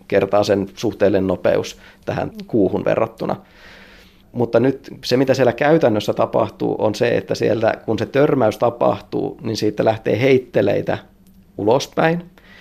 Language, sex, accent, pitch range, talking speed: Finnish, male, native, 95-130 Hz, 130 wpm